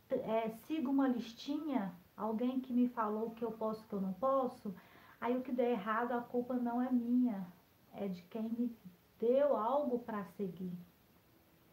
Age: 40-59